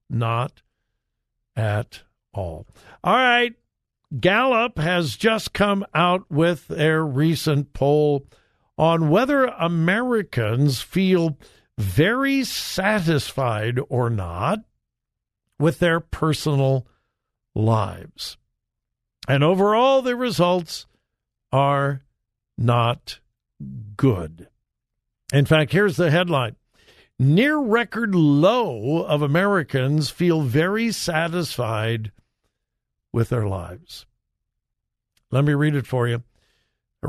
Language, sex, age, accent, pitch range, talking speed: English, male, 60-79, American, 115-175 Hz, 90 wpm